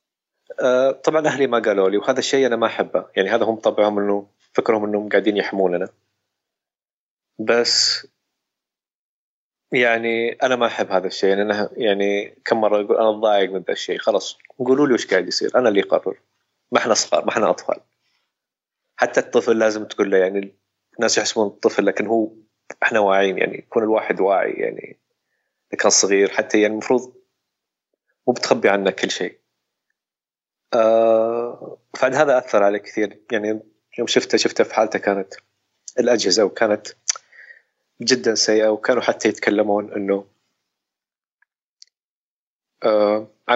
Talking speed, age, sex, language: 140 wpm, 30-49, male, Arabic